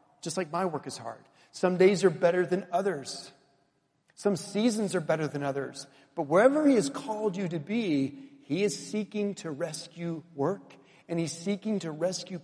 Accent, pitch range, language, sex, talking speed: American, 155-205 Hz, English, male, 180 wpm